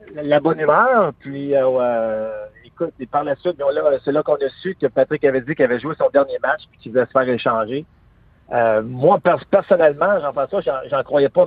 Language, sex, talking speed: French, male, 225 wpm